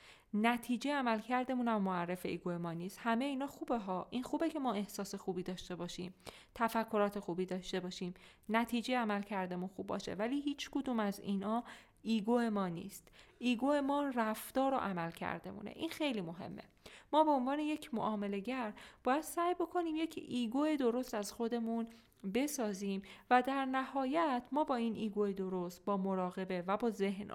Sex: female